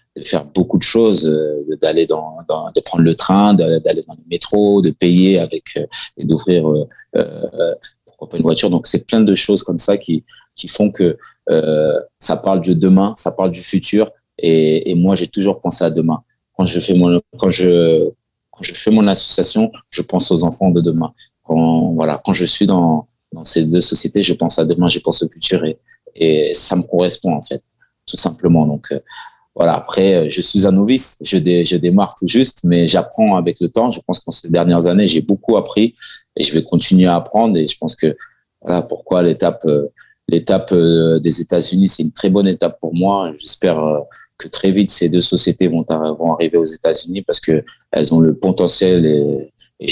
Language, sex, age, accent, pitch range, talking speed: French, male, 30-49, French, 80-100 Hz, 210 wpm